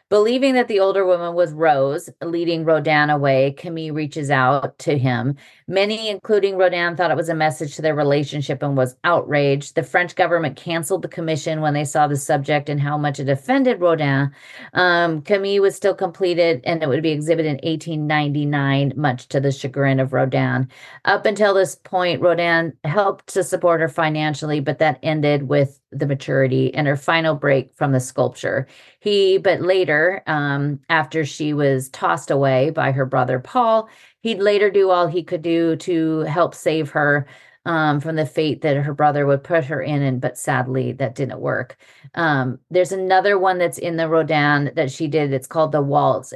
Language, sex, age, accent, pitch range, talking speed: English, female, 40-59, American, 140-175 Hz, 185 wpm